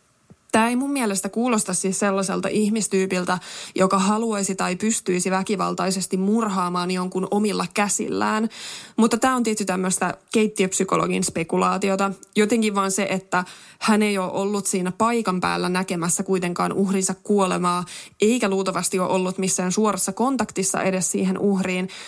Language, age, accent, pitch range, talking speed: Finnish, 20-39, native, 185-215 Hz, 135 wpm